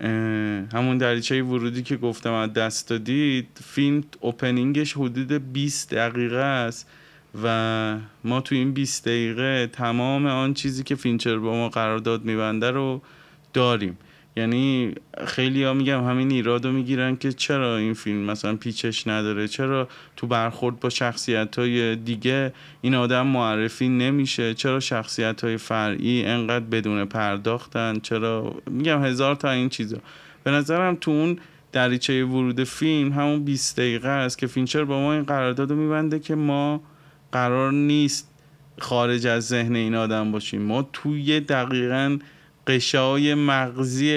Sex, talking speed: male, 145 wpm